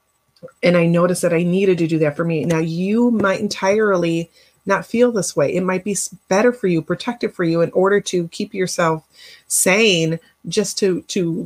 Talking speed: 195 wpm